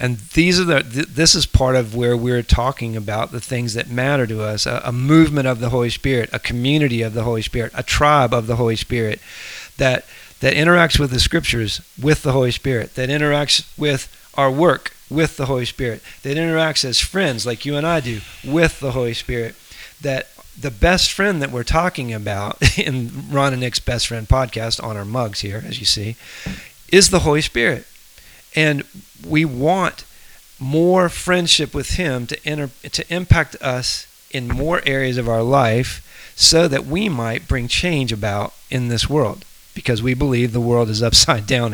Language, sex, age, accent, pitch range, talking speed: English, male, 40-59, American, 115-150 Hz, 190 wpm